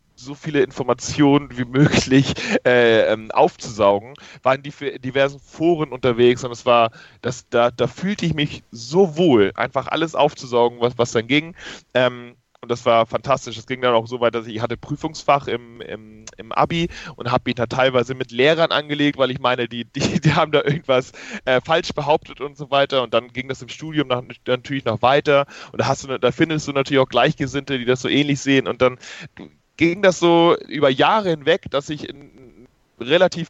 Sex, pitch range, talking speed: male, 125-155 Hz, 200 wpm